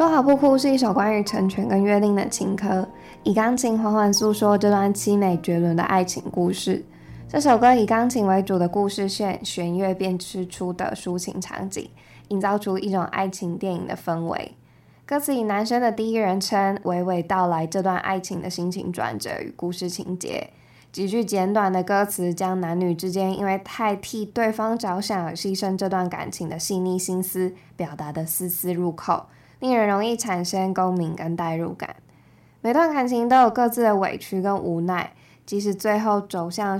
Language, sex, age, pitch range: Chinese, female, 10-29, 180-215 Hz